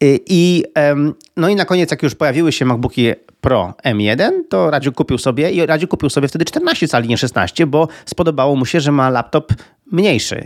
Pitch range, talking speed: 125-155 Hz, 190 wpm